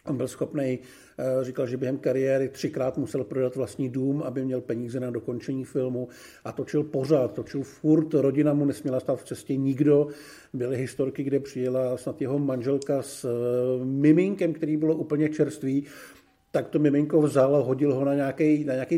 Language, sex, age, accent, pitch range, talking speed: Czech, male, 50-69, native, 135-165 Hz, 165 wpm